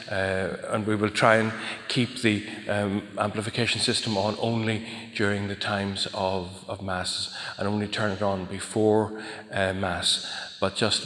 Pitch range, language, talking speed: 100-115 Hz, English, 155 wpm